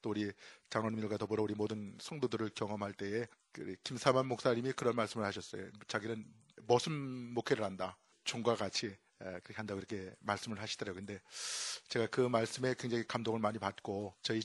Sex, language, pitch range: male, Korean, 105-120 Hz